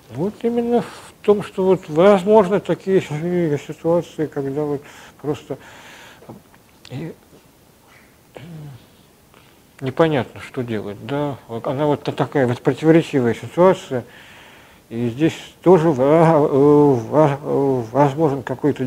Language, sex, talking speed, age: Russian, male, 85 wpm, 50-69